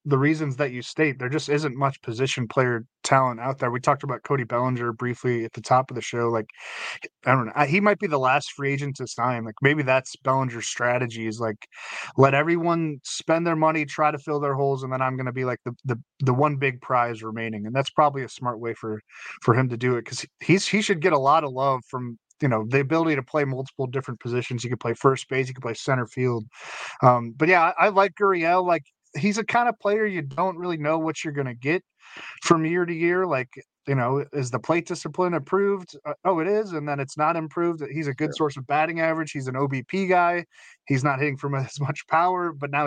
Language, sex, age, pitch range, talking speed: English, male, 20-39, 125-160 Hz, 245 wpm